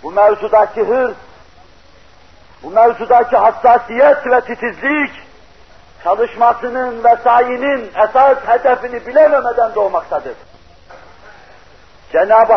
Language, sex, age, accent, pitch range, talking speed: Turkish, male, 50-69, native, 225-260 Hz, 75 wpm